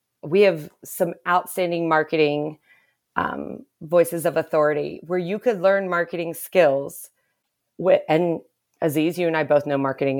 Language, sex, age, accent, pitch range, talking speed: English, female, 40-59, American, 150-185 Hz, 135 wpm